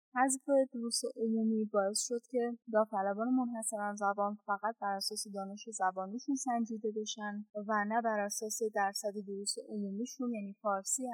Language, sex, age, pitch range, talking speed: Persian, female, 10-29, 205-245 Hz, 135 wpm